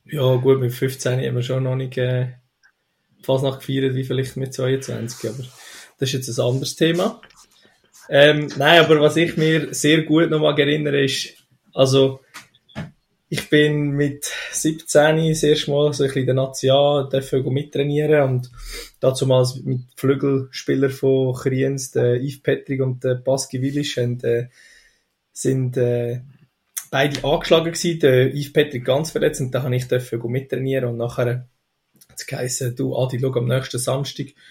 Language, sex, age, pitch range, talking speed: German, male, 20-39, 125-145 Hz, 150 wpm